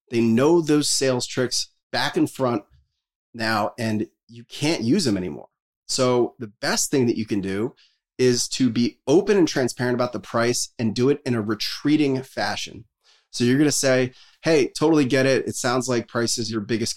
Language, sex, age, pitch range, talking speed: English, male, 30-49, 110-135 Hz, 195 wpm